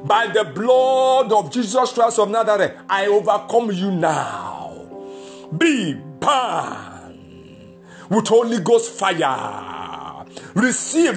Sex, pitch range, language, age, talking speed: male, 165-255 Hz, English, 60-79, 100 wpm